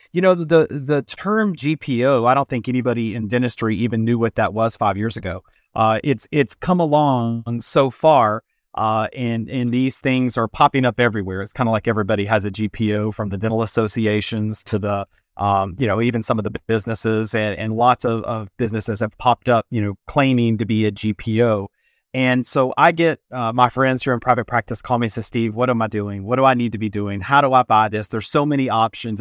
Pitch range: 110-125 Hz